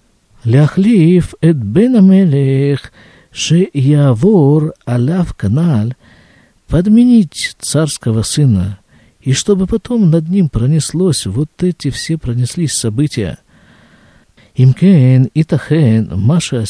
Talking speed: 85 wpm